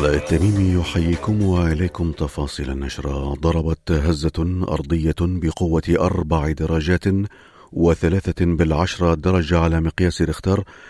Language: Arabic